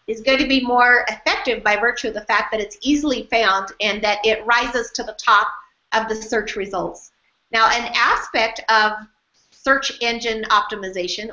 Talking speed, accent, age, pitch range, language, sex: 175 wpm, American, 50-69, 205-255 Hz, English, female